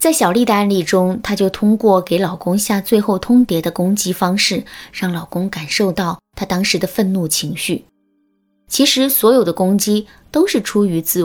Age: 20-39